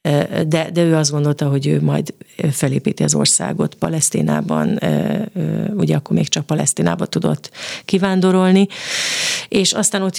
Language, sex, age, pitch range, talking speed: Hungarian, female, 40-59, 145-170 Hz, 130 wpm